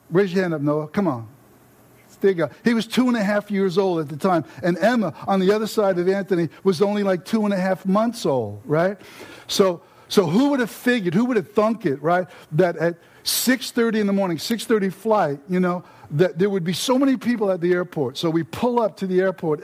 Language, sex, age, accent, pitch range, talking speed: English, male, 60-79, American, 170-210 Hz, 230 wpm